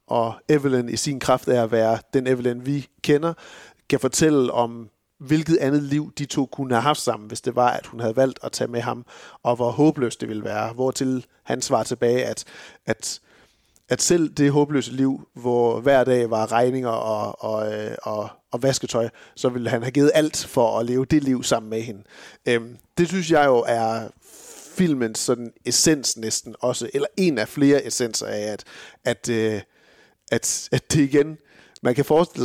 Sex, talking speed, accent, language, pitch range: male, 190 wpm, native, Danish, 115-140 Hz